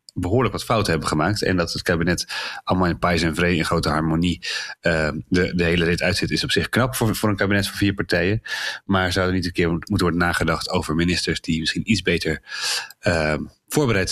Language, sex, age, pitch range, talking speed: Dutch, male, 30-49, 80-95 Hz, 215 wpm